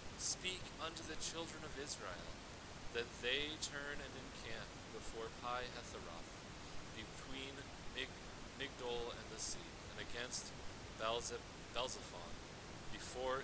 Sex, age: male, 40-59